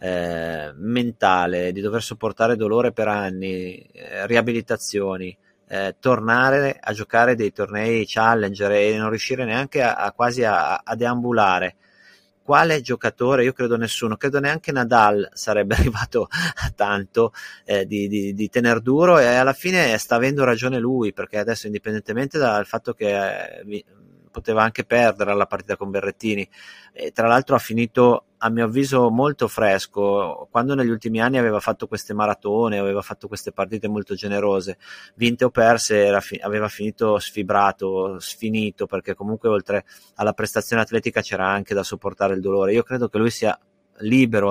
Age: 30-49